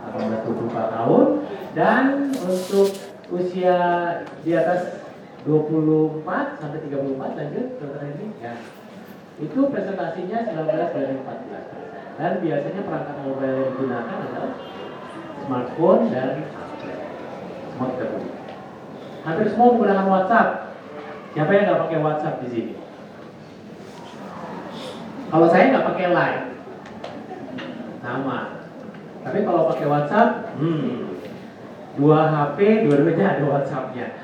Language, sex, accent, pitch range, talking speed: Indonesian, male, native, 145-195 Hz, 105 wpm